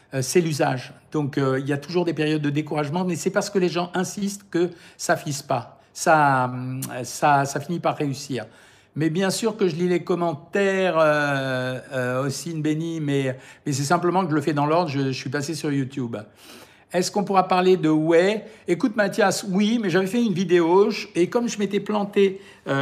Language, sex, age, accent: French, male, 60-79, French